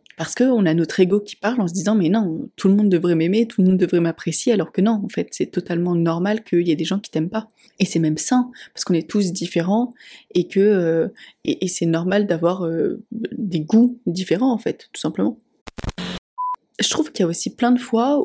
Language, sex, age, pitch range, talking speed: French, female, 20-39, 175-220 Hz, 245 wpm